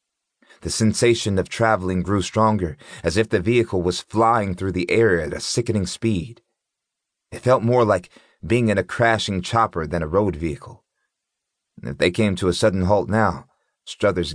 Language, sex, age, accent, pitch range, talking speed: English, male, 30-49, American, 85-105 Hz, 170 wpm